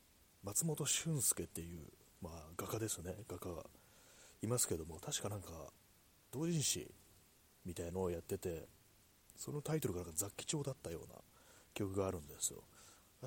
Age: 30-49